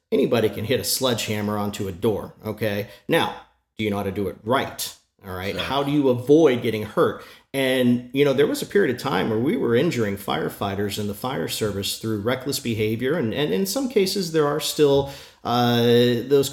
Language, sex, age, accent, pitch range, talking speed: English, male, 40-59, American, 105-125 Hz, 205 wpm